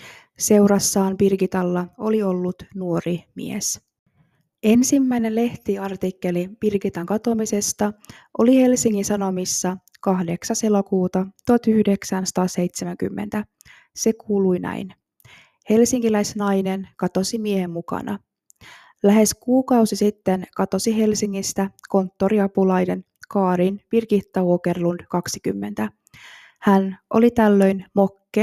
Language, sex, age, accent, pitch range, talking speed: Finnish, female, 20-39, native, 185-210 Hz, 75 wpm